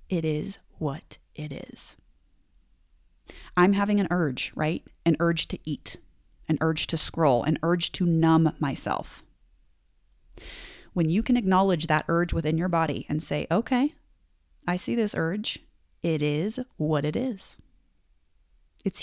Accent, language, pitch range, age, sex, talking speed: American, English, 150-205 Hz, 30-49, female, 140 wpm